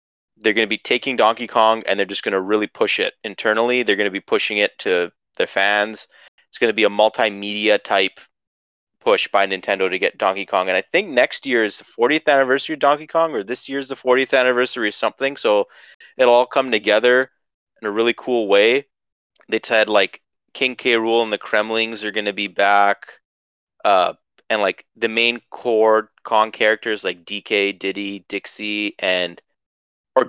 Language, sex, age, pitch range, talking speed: English, male, 30-49, 100-120 Hz, 180 wpm